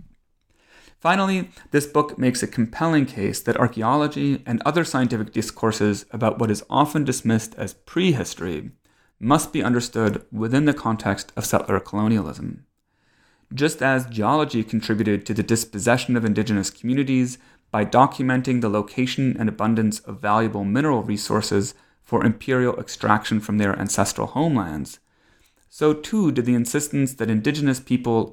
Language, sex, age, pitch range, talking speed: English, male, 30-49, 105-135 Hz, 135 wpm